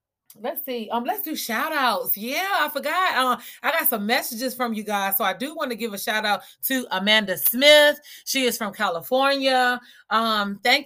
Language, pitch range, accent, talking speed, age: English, 190-245 Hz, American, 200 wpm, 30-49